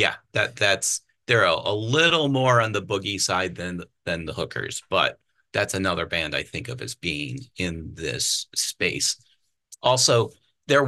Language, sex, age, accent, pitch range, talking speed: English, male, 30-49, American, 95-120 Hz, 165 wpm